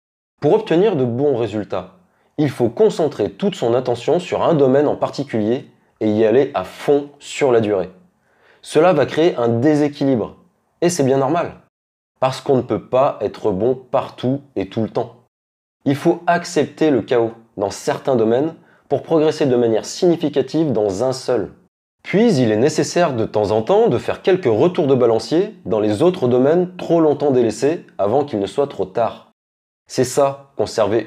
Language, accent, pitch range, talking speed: French, French, 110-145 Hz, 175 wpm